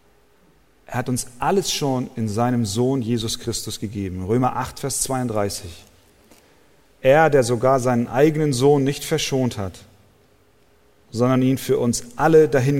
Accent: German